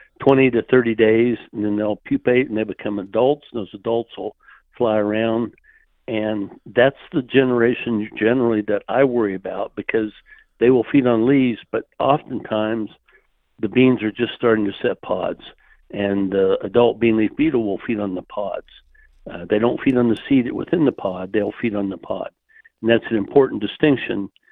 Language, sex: English, male